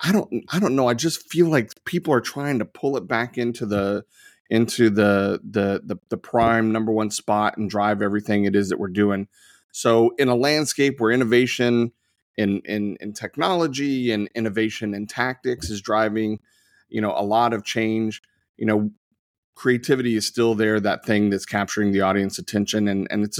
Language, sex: English, male